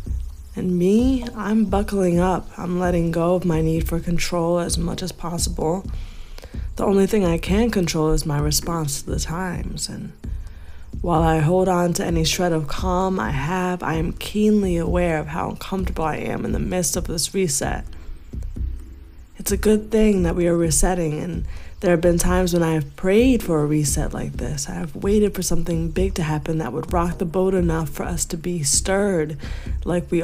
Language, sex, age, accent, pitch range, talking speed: English, female, 20-39, American, 155-185 Hz, 195 wpm